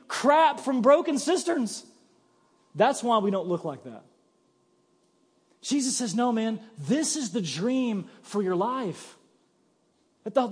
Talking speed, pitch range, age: 130 wpm, 195-270 Hz, 40-59